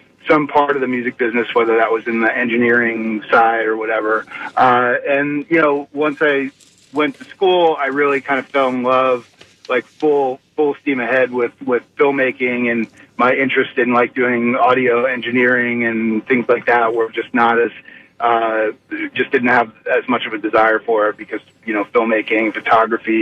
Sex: male